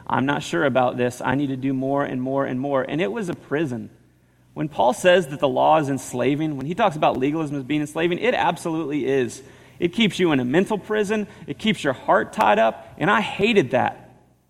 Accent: American